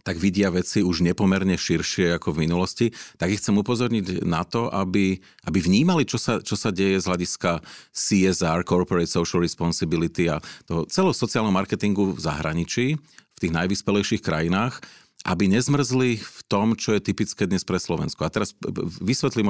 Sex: male